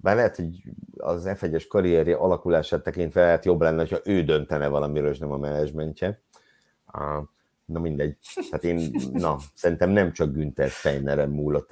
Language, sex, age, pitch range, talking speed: Hungarian, male, 50-69, 80-105 Hz, 160 wpm